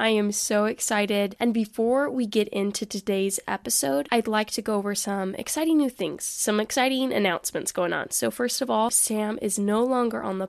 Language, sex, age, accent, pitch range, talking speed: English, female, 10-29, American, 195-240 Hz, 200 wpm